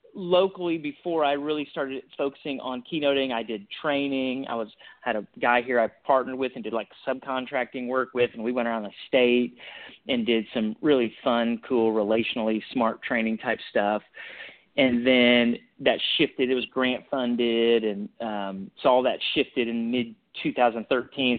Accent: American